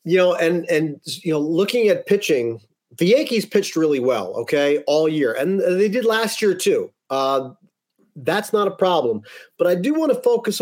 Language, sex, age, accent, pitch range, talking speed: English, male, 40-59, American, 150-210 Hz, 190 wpm